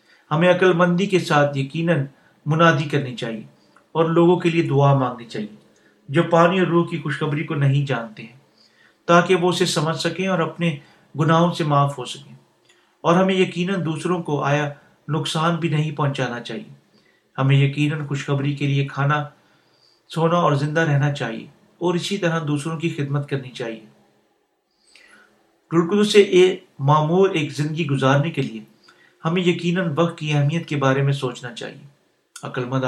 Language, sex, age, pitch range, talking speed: Urdu, male, 40-59, 140-170 Hz, 155 wpm